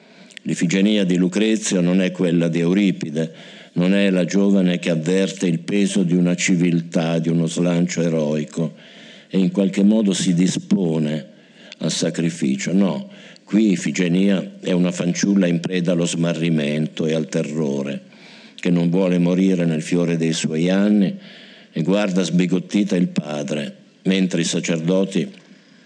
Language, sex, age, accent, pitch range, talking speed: Italian, male, 60-79, native, 85-105 Hz, 140 wpm